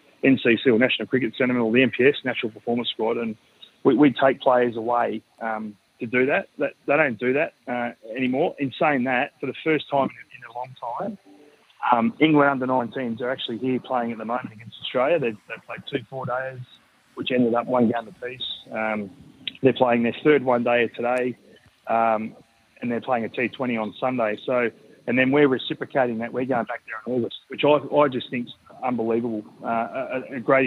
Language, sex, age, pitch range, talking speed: English, male, 30-49, 115-130 Hz, 195 wpm